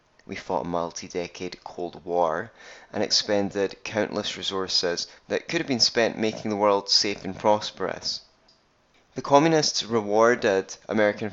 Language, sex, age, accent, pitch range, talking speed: English, male, 20-39, British, 100-120 Hz, 130 wpm